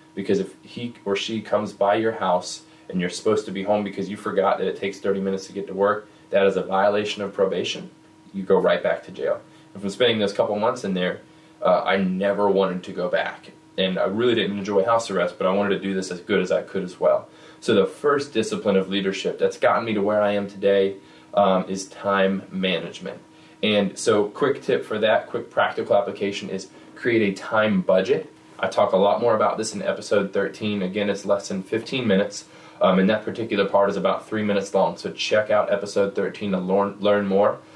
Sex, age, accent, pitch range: male, 20-39, American, 95-110 Hz